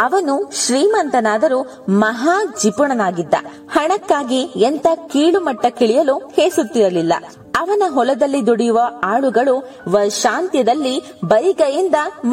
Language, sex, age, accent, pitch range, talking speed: English, female, 20-39, Indian, 220-325 Hz, 70 wpm